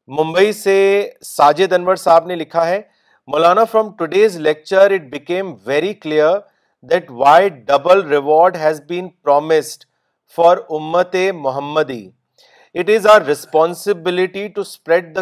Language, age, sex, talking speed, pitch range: Urdu, 40-59, male, 70 wpm, 155-195 Hz